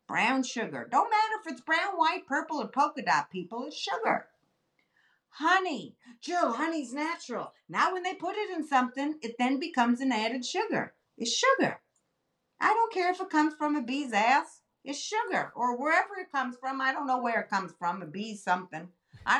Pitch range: 195-280 Hz